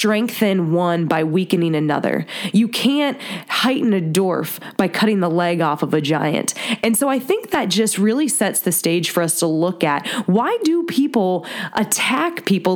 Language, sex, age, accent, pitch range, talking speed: English, female, 20-39, American, 180-235 Hz, 180 wpm